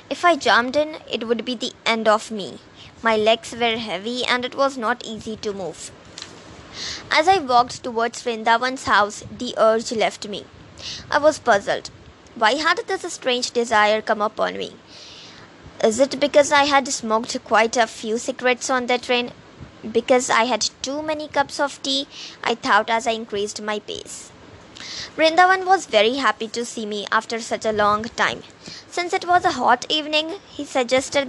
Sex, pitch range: male, 225-275 Hz